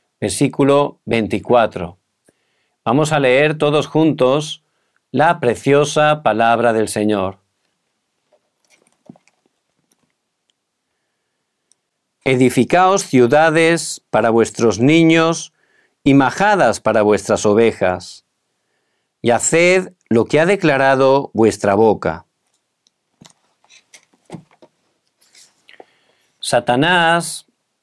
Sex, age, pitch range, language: male, 50-69, 115-160 Hz, Korean